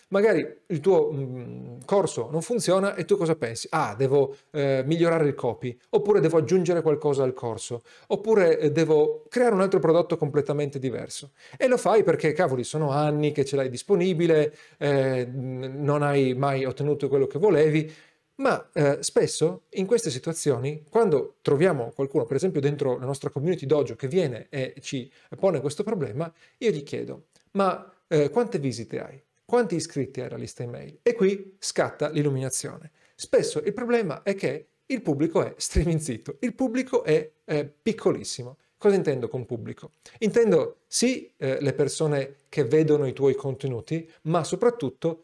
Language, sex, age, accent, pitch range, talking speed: Italian, male, 40-59, native, 140-185 Hz, 160 wpm